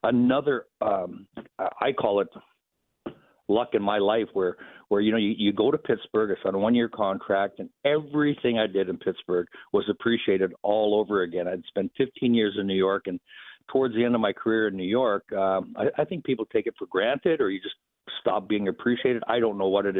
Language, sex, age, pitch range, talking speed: English, male, 60-79, 100-120 Hz, 215 wpm